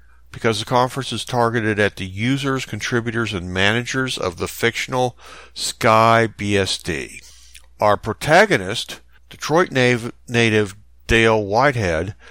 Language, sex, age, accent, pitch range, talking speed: English, male, 60-79, American, 95-130 Hz, 105 wpm